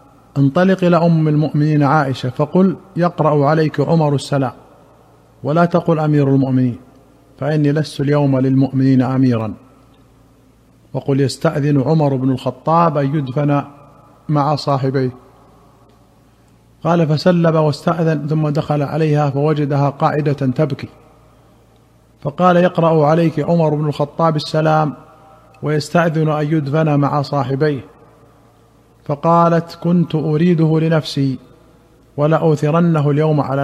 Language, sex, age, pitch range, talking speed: Arabic, male, 50-69, 140-160 Hz, 100 wpm